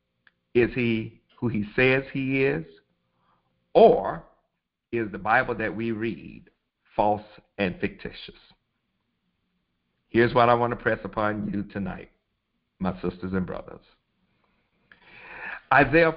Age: 60-79